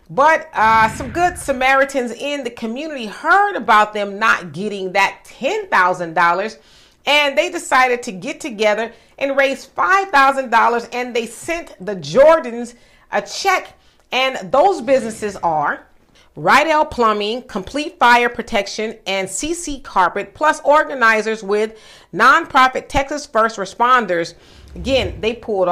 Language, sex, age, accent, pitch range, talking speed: English, female, 40-59, American, 220-285 Hz, 125 wpm